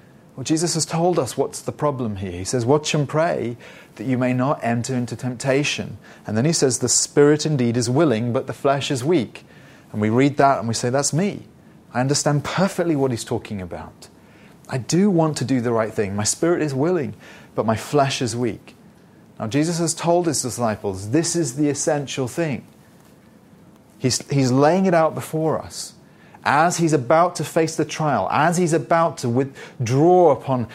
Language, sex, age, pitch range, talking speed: English, male, 30-49, 120-160 Hz, 190 wpm